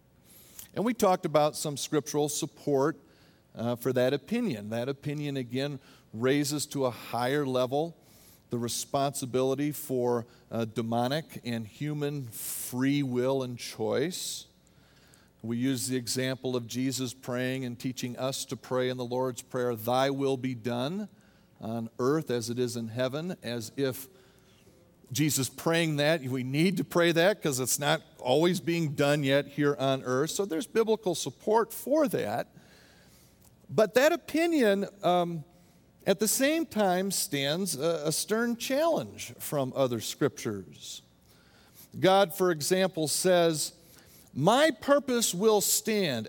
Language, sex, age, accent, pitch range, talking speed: English, male, 50-69, American, 125-180 Hz, 135 wpm